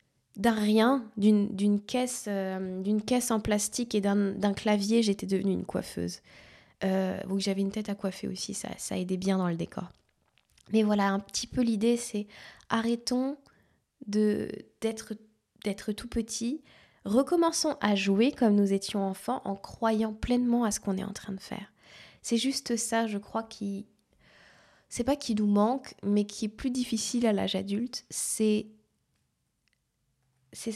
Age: 20-39